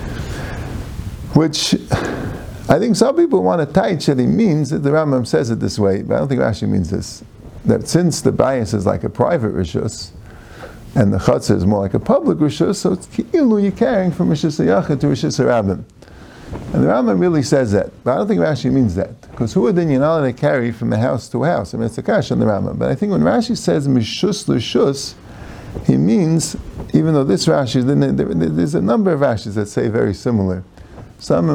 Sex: male